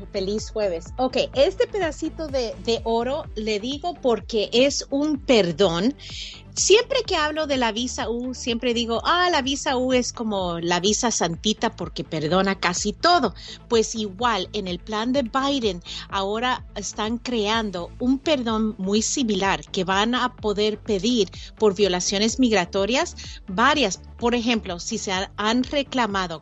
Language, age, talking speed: Spanish, 40-59, 150 wpm